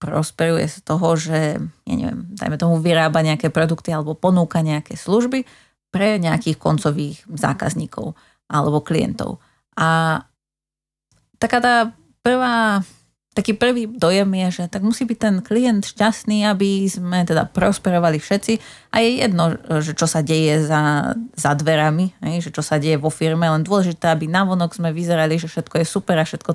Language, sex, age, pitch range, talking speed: Slovak, female, 30-49, 155-180 Hz, 160 wpm